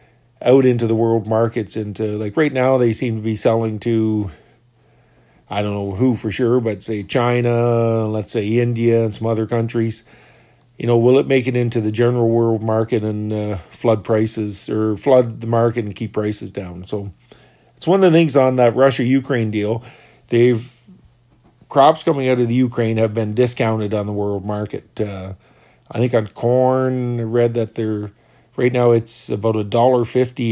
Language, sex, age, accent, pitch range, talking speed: English, male, 50-69, American, 110-125 Hz, 185 wpm